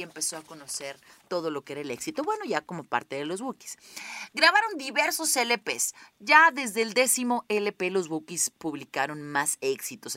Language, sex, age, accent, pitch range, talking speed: Spanish, female, 30-49, Mexican, 150-225 Hz, 170 wpm